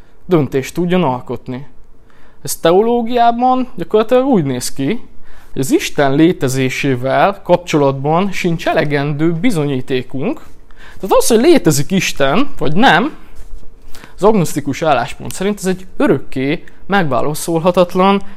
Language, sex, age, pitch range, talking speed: Hungarian, male, 20-39, 130-185 Hz, 105 wpm